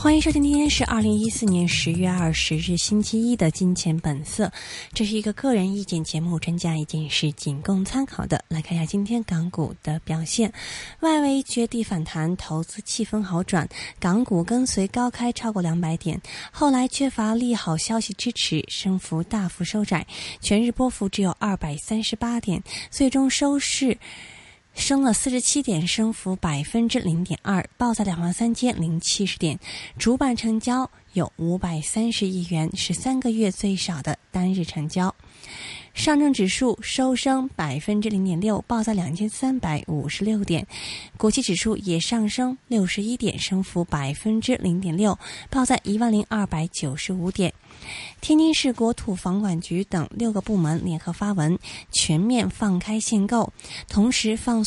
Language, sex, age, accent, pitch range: Chinese, female, 20-39, native, 170-230 Hz